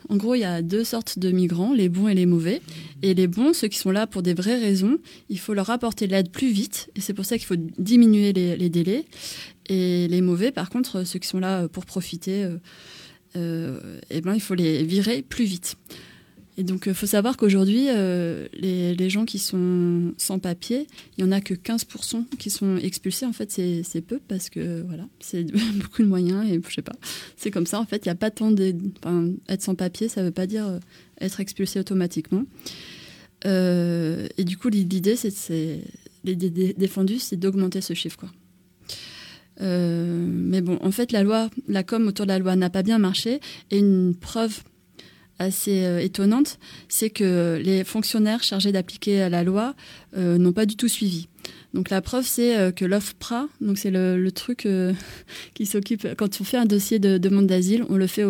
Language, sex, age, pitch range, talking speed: French, female, 20-39, 180-215 Hz, 210 wpm